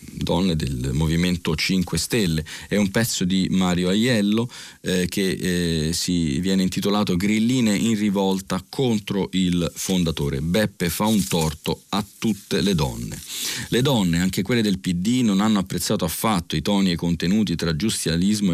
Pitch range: 85-105 Hz